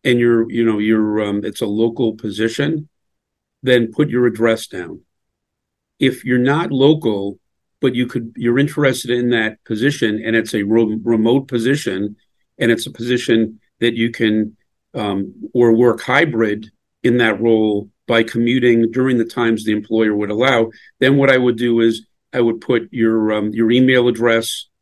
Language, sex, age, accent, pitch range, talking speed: English, male, 50-69, American, 110-125 Hz, 165 wpm